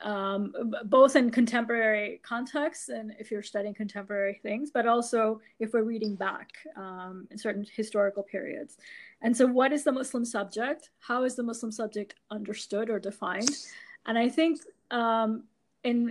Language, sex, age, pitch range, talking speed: English, female, 30-49, 210-245 Hz, 155 wpm